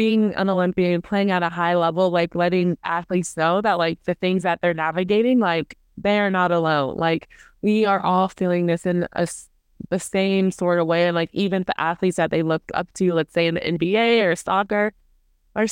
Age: 20-39